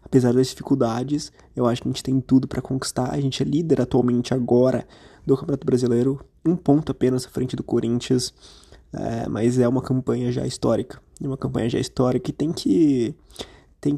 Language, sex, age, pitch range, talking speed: Portuguese, male, 20-39, 125-140 Hz, 185 wpm